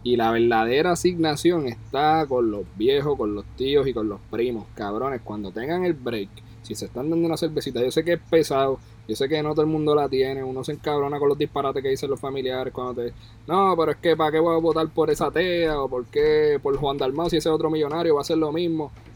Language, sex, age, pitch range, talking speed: Spanish, male, 20-39, 110-155 Hz, 250 wpm